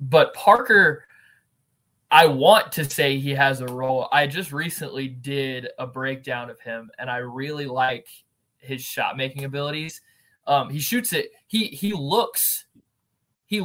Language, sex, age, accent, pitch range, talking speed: English, male, 20-39, American, 125-150 Hz, 150 wpm